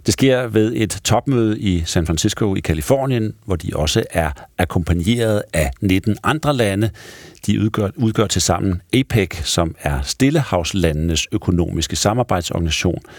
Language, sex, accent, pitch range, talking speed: Danish, male, native, 85-115 Hz, 130 wpm